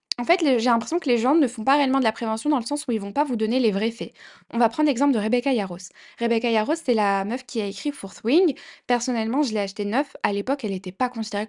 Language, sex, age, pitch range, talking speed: French, female, 10-29, 210-255 Hz, 295 wpm